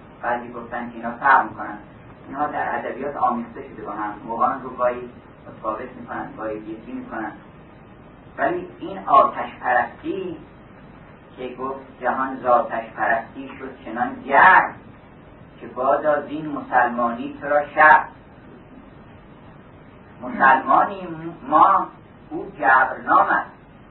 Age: 40-59